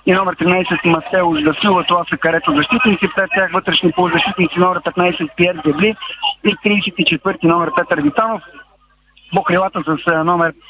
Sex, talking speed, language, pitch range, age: male, 145 wpm, Bulgarian, 165-205 Hz, 40-59